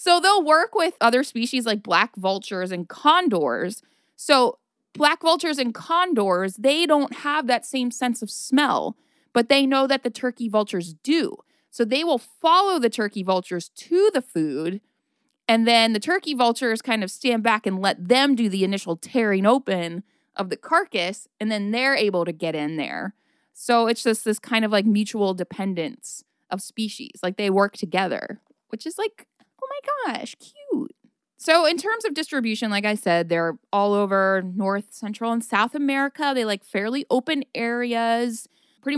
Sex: female